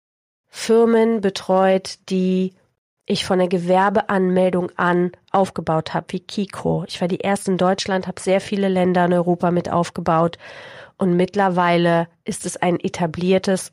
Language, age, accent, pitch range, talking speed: German, 30-49, German, 175-200 Hz, 140 wpm